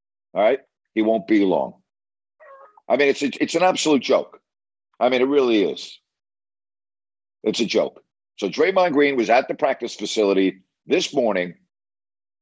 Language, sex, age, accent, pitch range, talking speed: English, male, 50-69, American, 100-140 Hz, 155 wpm